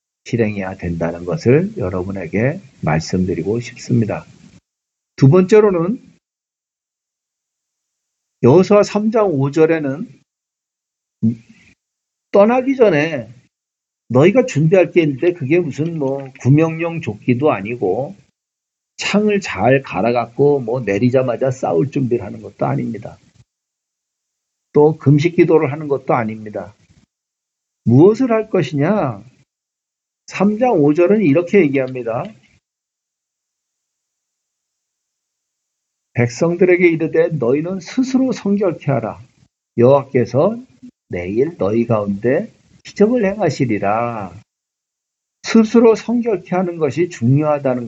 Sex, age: male, 50-69